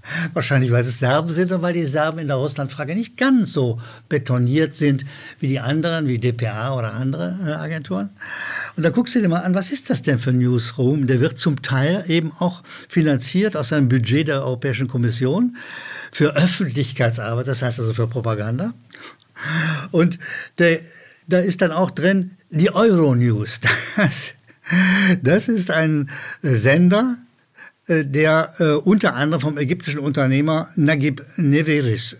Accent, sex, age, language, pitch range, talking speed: German, male, 60-79, German, 130-180 Hz, 155 wpm